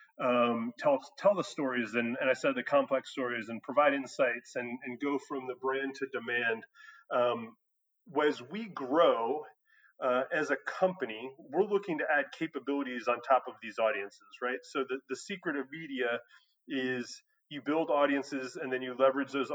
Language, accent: English, American